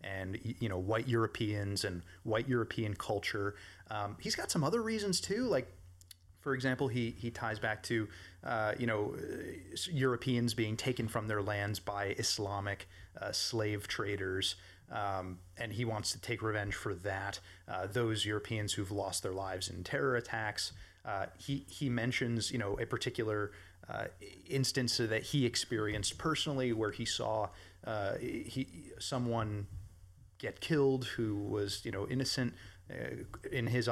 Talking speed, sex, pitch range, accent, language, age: 155 wpm, male, 100-120 Hz, American, English, 30-49